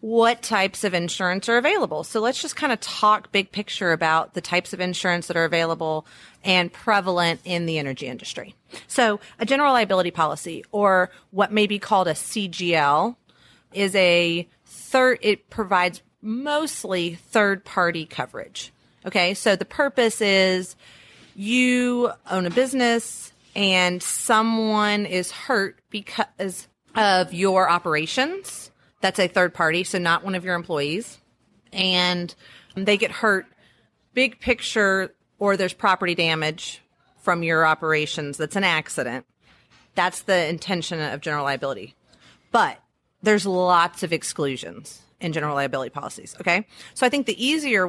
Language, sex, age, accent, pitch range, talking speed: English, female, 30-49, American, 170-215 Hz, 140 wpm